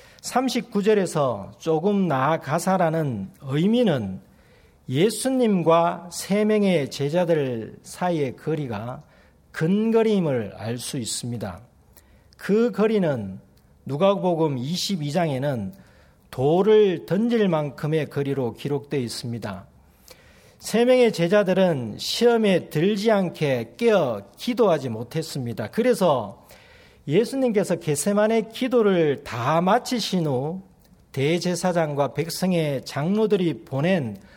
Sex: male